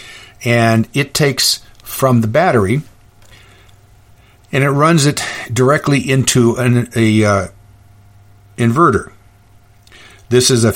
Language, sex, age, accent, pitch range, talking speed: English, male, 50-69, American, 100-125 Hz, 105 wpm